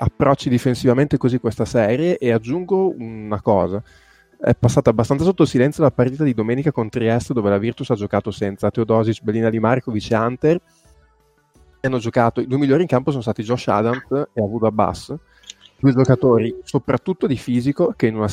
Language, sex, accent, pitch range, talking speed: Italian, male, native, 110-130 Hz, 175 wpm